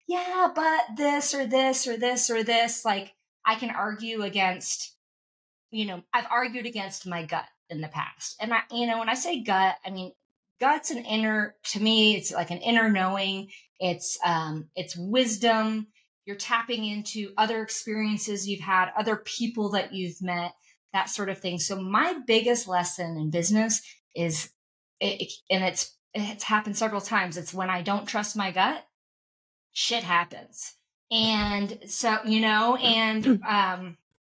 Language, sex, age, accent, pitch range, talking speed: English, female, 30-49, American, 180-220 Hz, 165 wpm